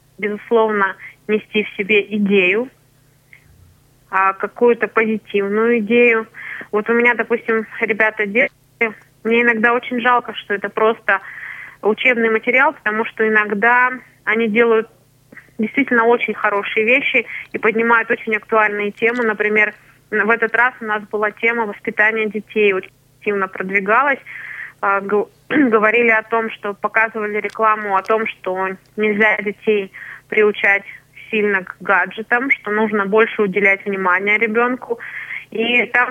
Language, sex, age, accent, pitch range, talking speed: Russian, female, 20-39, native, 205-235 Hz, 120 wpm